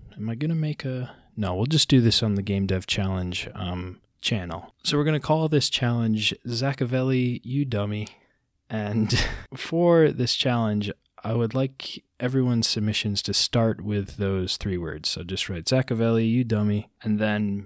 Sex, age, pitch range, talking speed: male, 20-39, 100-120 Hz, 165 wpm